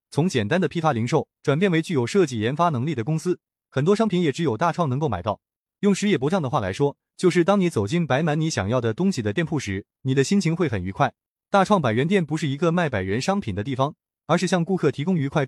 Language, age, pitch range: Chinese, 20-39, 130-185 Hz